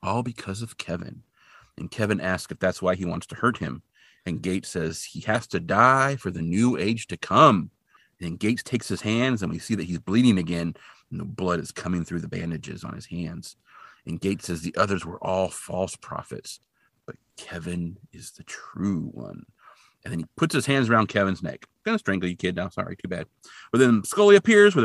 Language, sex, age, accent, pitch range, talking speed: English, male, 40-59, American, 90-130 Hz, 210 wpm